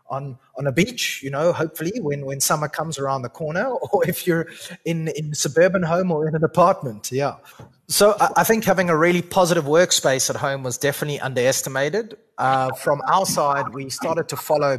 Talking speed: 195 wpm